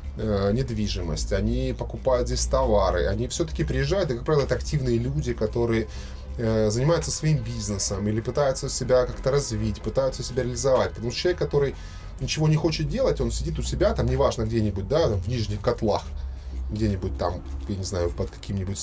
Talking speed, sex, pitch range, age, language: 170 wpm, male, 105-135 Hz, 20-39, Russian